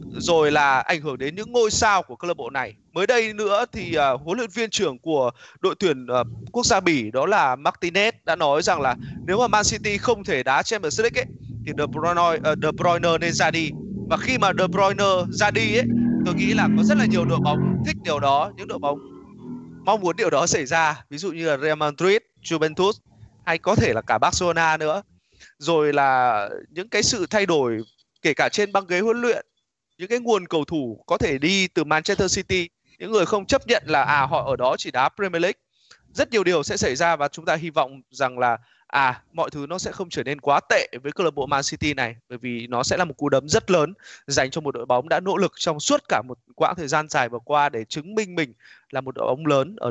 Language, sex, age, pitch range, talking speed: Vietnamese, male, 20-39, 145-220 Hz, 245 wpm